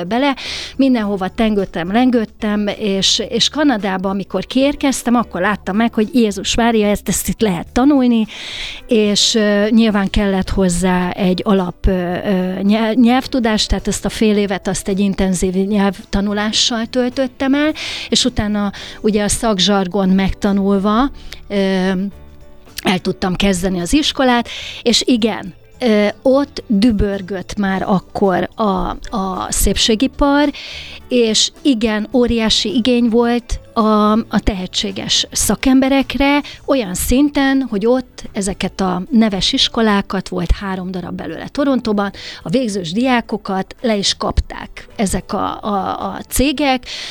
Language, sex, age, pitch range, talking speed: Hungarian, female, 30-49, 195-245 Hz, 120 wpm